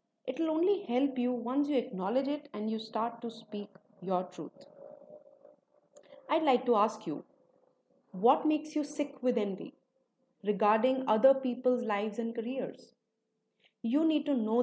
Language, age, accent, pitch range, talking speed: English, 30-49, Indian, 215-270 Hz, 150 wpm